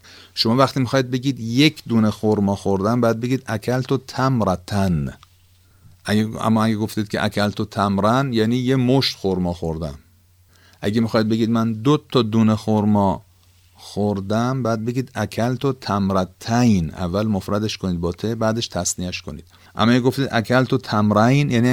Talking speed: 145 wpm